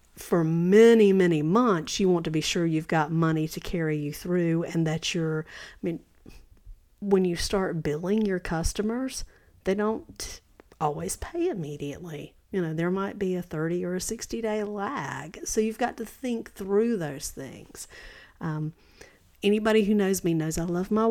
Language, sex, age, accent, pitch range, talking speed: English, female, 50-69, American, 160-210 Hz, 175 wpm